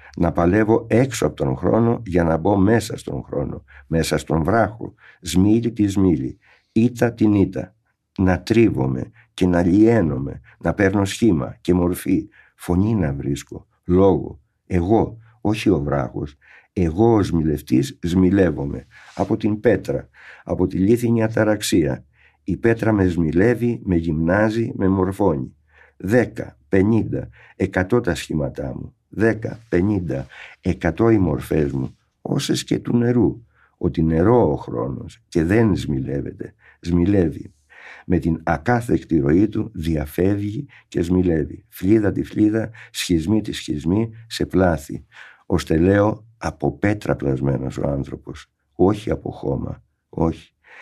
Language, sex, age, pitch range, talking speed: Greek, male, 60-79, 85-110 Hz, 130 wpm